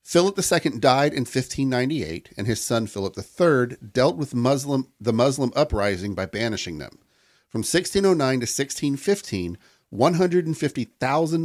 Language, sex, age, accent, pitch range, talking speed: English, male, 40-59, American, 105-150 Hz, 120 wpm